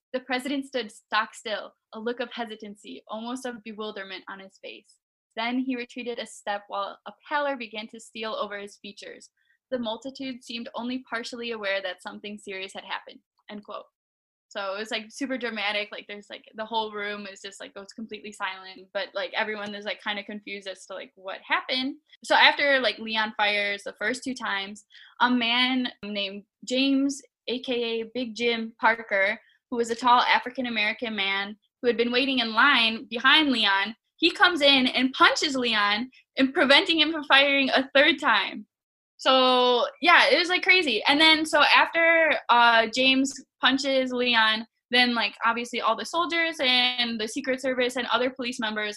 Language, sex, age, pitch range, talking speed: English, female, 10-29, 215-265 Hz, 180 wpm